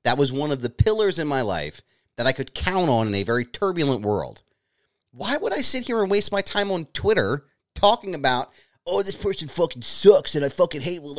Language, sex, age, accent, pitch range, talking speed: English, male, 30-49, American, 120-195 Hz, 225 wpm